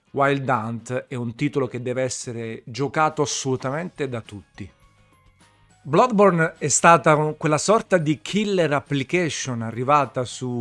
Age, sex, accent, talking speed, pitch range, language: 40-59, male, native, 125 wpm, 125-155 Hz, Italian